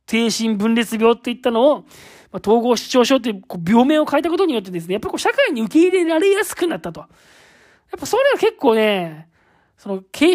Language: Japanese